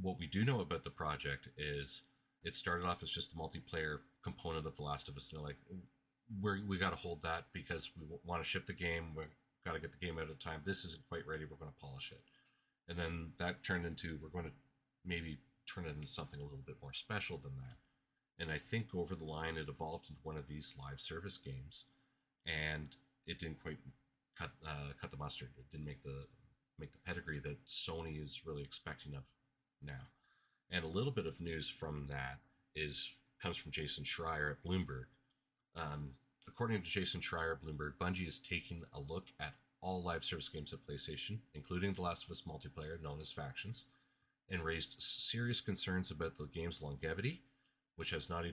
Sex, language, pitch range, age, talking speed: male, English, 75-95 Hz, 40-59, 205 wpm